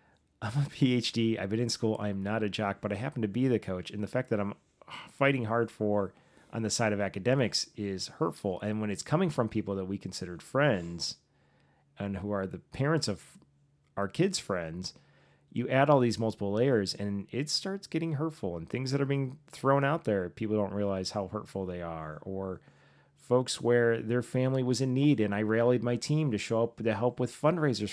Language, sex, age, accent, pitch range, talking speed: English, male, 30-49, American, 105-130 Hz, 210 wpm